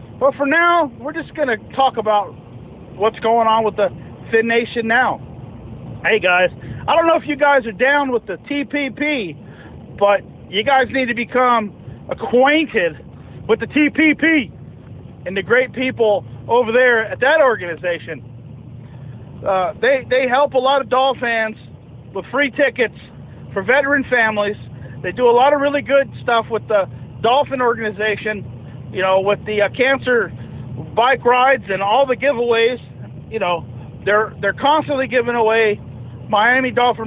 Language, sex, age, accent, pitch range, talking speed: English, male, 40-59, American, 165-270 Hz, 155 wpm